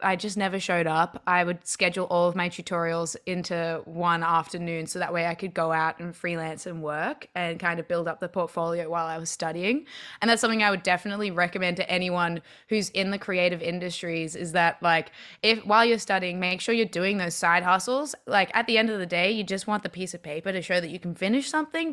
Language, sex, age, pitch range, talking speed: English, female, 20-39, 175-205 Hz, 235 wpm